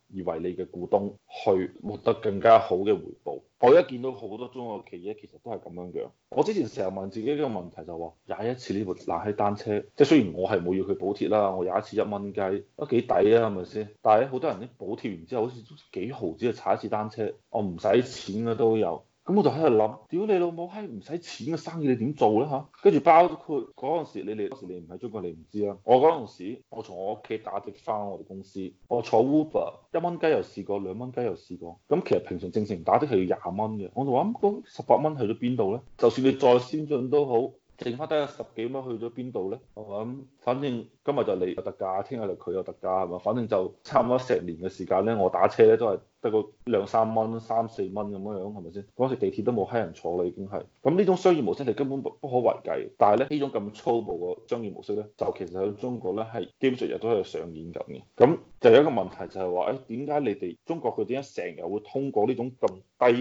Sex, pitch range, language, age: male, 100-135 Hz, Chinese, 20-39